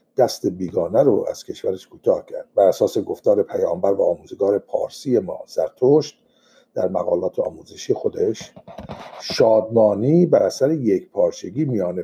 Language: Persian